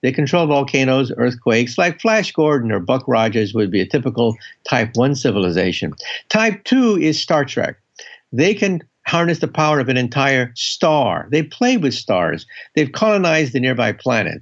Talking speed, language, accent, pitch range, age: 165 wpm, English, American, 125-195 Hz, 60-79